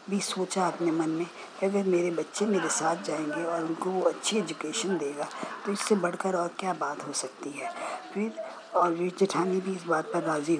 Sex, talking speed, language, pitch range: female, 200 wpm, Hindi, 170-200 Hz